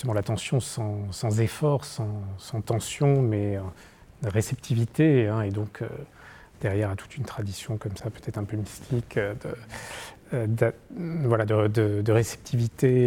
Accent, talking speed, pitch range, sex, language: French, 140 wpm, 110-140 Hz, male, French